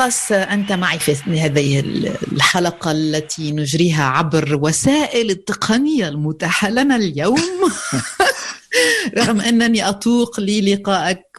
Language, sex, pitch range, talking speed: Arabic, female, 155-195 Hz, 95 wpm